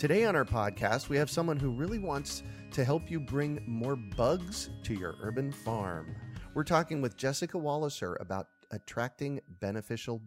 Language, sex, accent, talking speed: English, male, American, 165 wpm